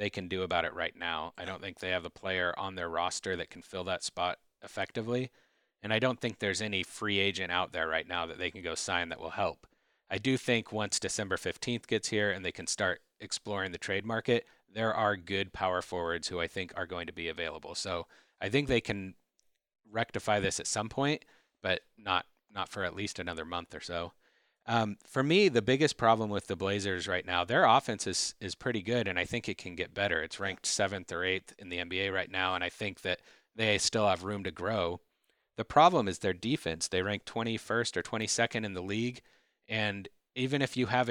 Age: 30-49